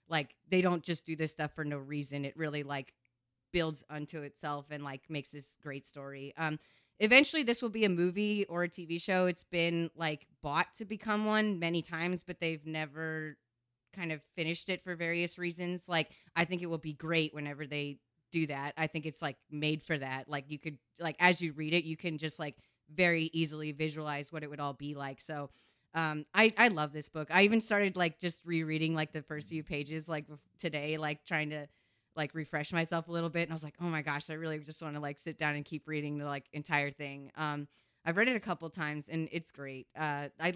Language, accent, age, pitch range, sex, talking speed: English, American, 20-39, 150-175 Hz, female, 230 wpm